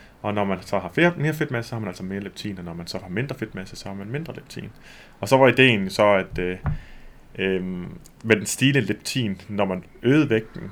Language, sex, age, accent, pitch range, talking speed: Danish, male, 30-49, native, 95-120 Hz, 230 wpm